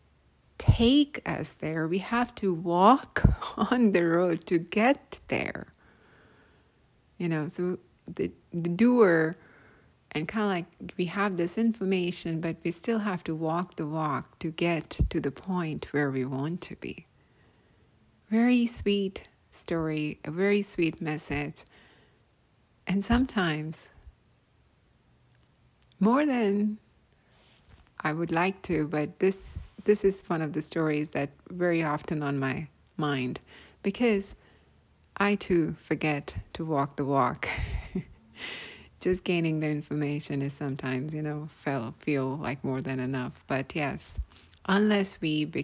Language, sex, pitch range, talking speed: English, female, 145-180 Hz, 130 wpm